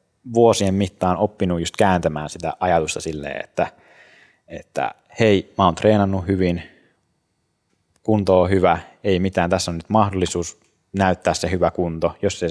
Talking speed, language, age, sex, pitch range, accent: 145 wpm, Finnish, 20-39, male, 80-95 Hz, native